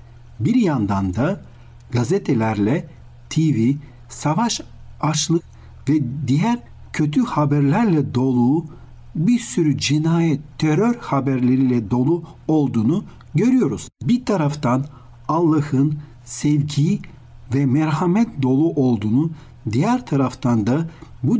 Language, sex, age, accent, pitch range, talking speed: Turkish, male, 60-79, native, 120-160 Hz, 90 wpm